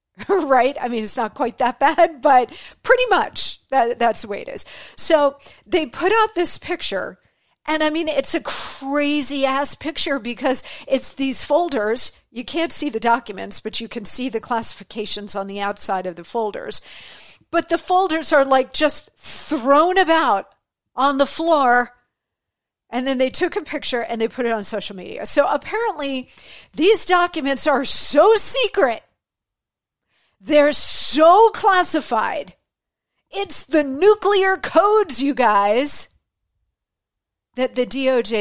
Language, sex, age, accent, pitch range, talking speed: English, female, 50-69, American, 225-310 Hz, 145 wpm